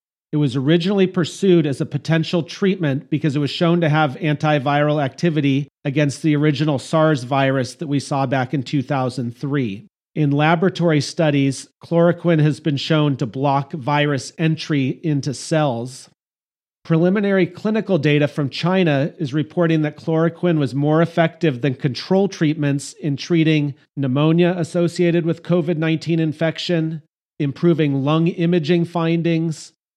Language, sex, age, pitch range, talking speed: English, male, 40-59, 140-165 Hz, 130 wpm